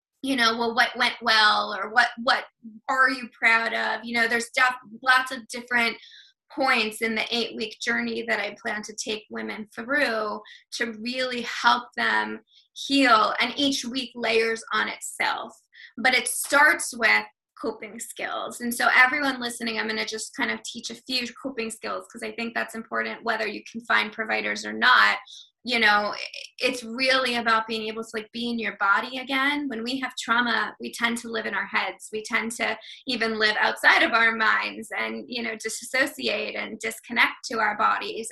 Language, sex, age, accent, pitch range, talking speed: English, female, 20-39, American, 215-245 Hz, 190 wpm